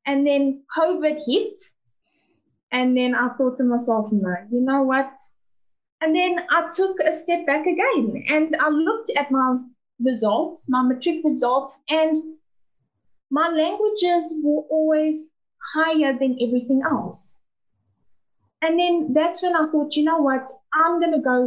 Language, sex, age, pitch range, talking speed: English, female, 20-39, 250-330 Hz, 150 wpm